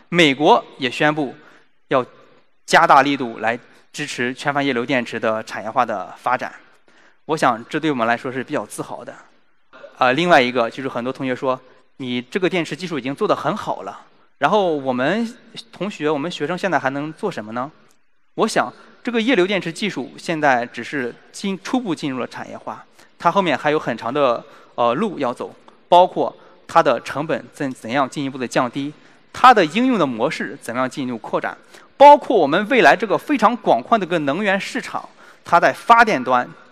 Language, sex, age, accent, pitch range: Chinese, male, 20-39, native, 130-195 Hz